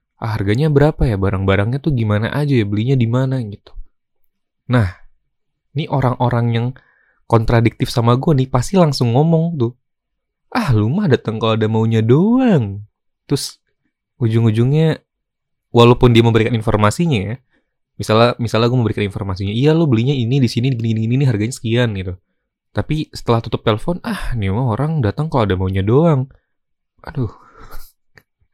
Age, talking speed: 20-39, 150 wpm